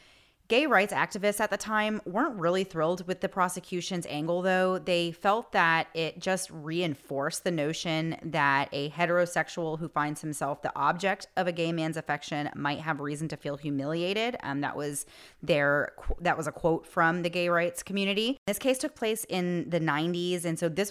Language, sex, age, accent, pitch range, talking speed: English, female, 30-49, American, 155-190 Hz, 180 wpm